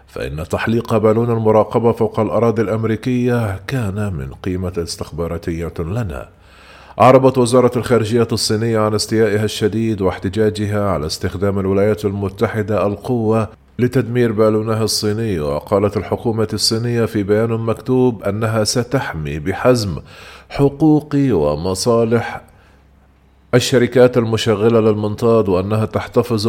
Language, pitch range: Arabic, 95-115 Hz